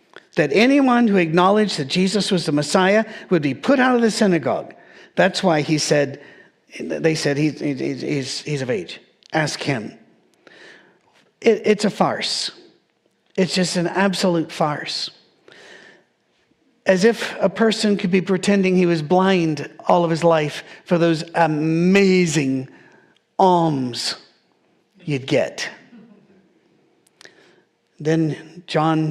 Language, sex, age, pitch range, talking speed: English, male, 50-69, 155-200 Hz, 125 wpm